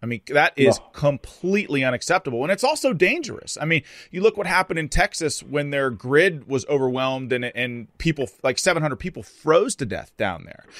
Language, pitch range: English, 115-150 Hz